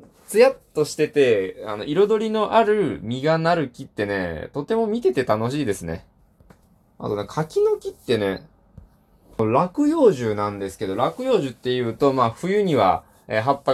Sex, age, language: male, 20-39, Japanese